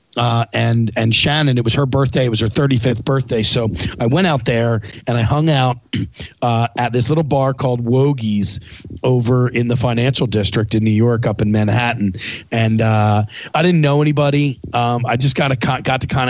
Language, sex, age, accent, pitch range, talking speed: English, male, 40-59, American, 110-135 Hz, 200 wpm